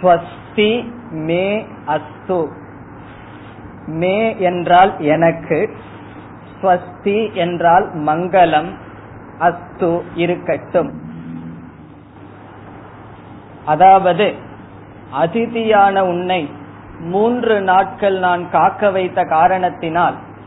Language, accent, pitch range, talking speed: Tamil, native, 155-185 Hz, 35 wpm